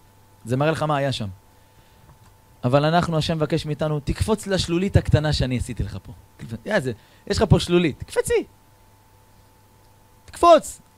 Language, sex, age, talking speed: Hebrew, male, 30-49, 135 wpm